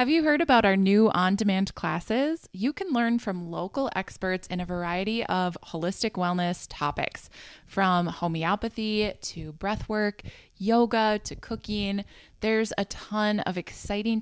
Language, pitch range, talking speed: English, 175-220 Hz, 140 wpm